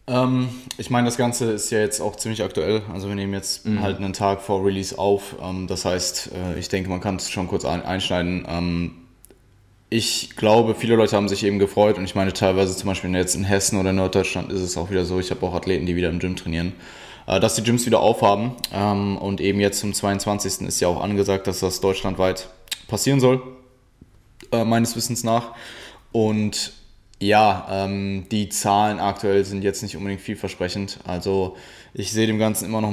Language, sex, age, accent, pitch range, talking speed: German, male, 10-29, German, 95-110 Hz, 190 wpm